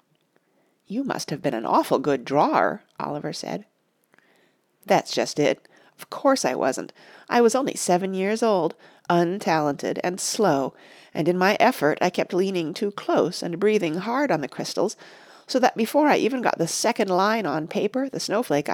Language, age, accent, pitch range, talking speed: English, 40-59, American, 185-255 Hz, 175 wpm